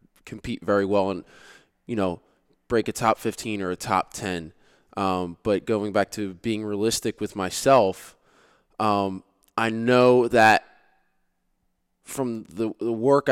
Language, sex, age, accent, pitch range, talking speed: English, male, 20-39, American, 95-115 Hz, 140 wpm